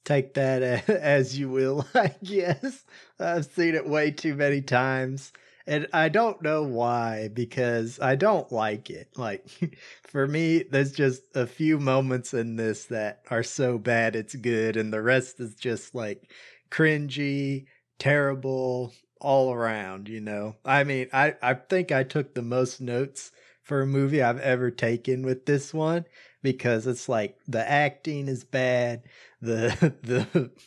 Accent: American